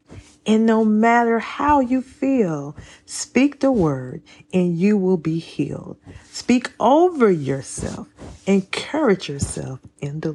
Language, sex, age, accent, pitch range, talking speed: English, female, 40-59, American, 155-205 Hz, 120 wpm